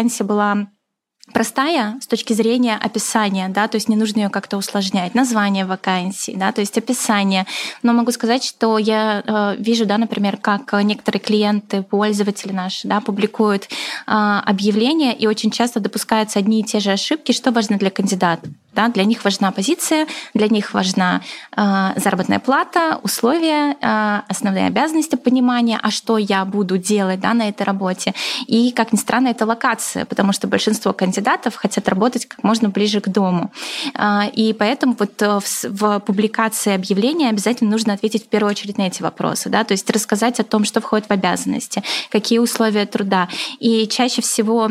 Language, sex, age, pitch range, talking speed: Russian, female, 20-39, 205-230 Hz, 170 wpm